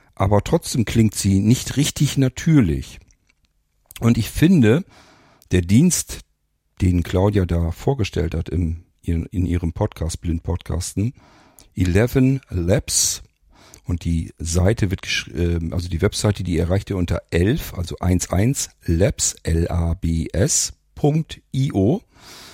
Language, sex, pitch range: German, male, 85-110 Hz